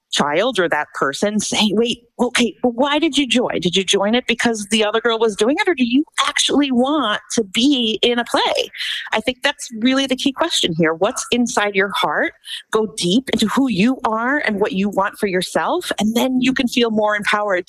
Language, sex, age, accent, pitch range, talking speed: English, female, 40-59, American, 185-270 Hz, 215 wpm